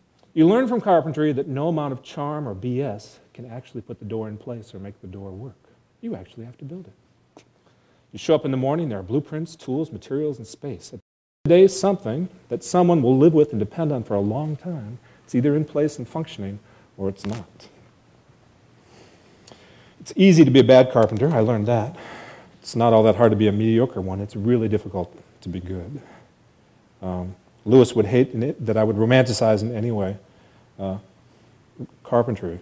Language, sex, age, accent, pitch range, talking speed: English, male, 40-59, American, 110-155 Hz, 195 wpm